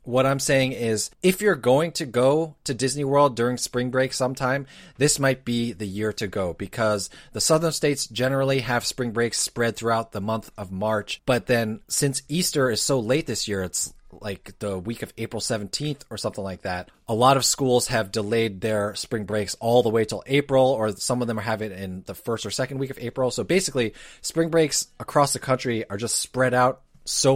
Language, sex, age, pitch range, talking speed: English, male, 30-49, 110-135 Hz, 215 wpm